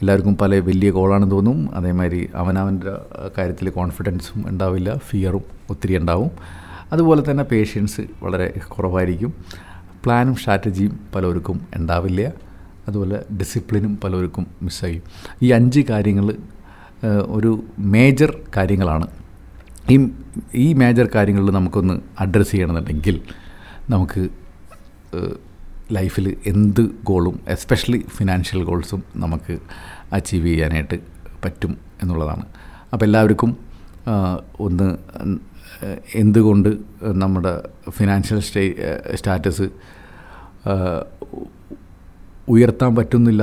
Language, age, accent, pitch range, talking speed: Malayalam, 50-69, native, 90-105 Hz, 80 wpm